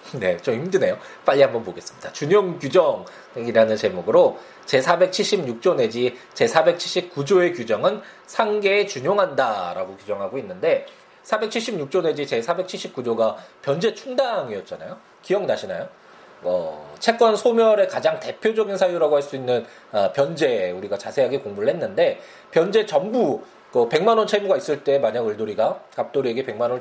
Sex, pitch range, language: male, 150-220 Hz, Korean